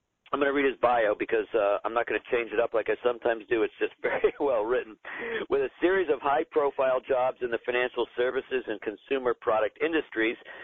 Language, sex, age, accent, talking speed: English, male, 50-69, American, 215 wpm